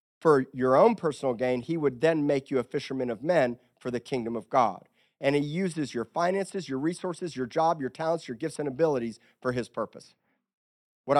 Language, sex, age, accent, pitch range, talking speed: English, male, 50-69, American, 120-160 Hz, 205 wpm